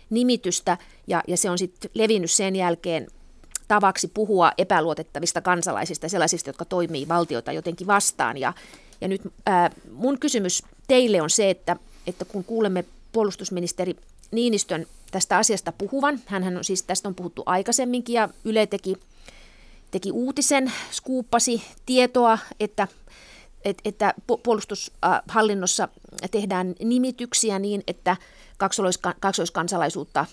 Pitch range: 180-225 Hz